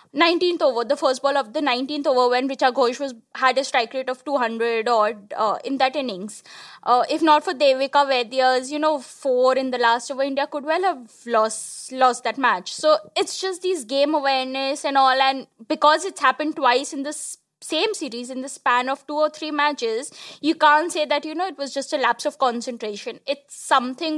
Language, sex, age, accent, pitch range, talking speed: English, female, 20-39, Indian, 245-305 Hz, 205 wpm